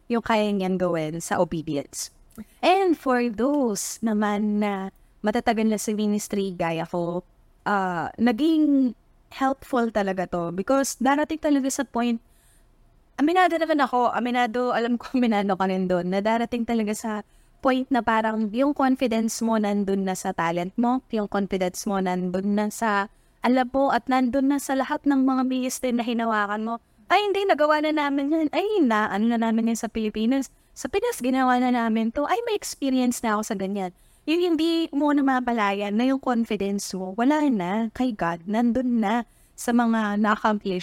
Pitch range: 205-265 Hz